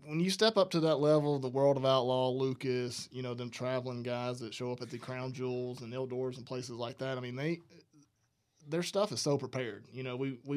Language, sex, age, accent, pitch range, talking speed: English, male, 20-39, American, 125-145 Hz, 235 wpm